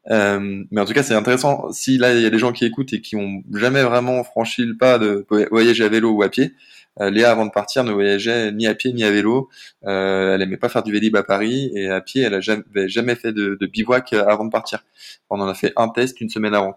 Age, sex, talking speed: 20-39, male, 270 wpm